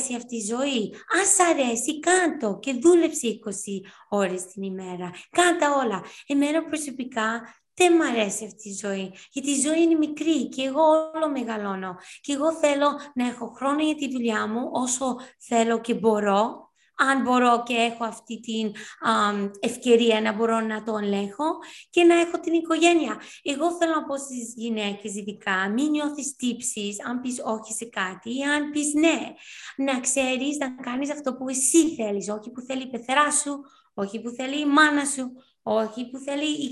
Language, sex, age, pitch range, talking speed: Greek, female, 20-39, 225-295 Hz, 175 wpm